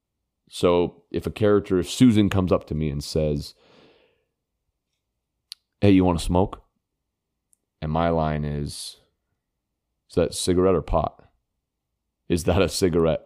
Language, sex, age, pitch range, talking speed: English, male, 30-49, 80-100 Hz, 135 wpm